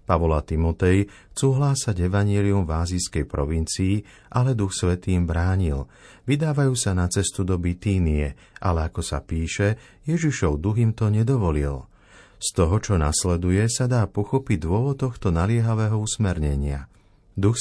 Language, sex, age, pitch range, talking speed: Slovak, male, 50-69, 85-115 Hz, 135 wpm